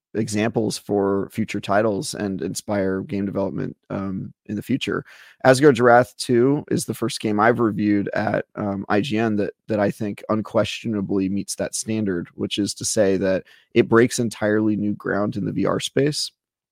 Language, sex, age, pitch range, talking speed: English, male, 30-49, 100-115 Hz, 165 wpm